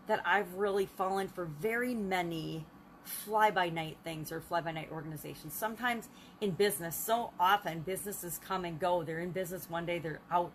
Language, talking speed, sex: English, 170 wpm, female